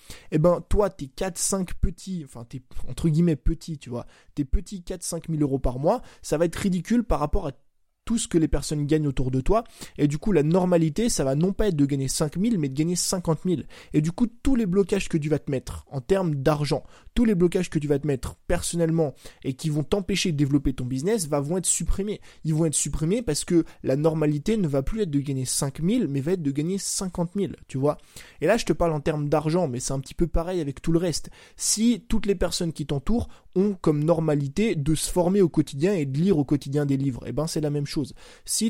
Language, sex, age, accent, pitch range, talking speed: French, male, 20-39, French, 145-185 Hz, 250 wpm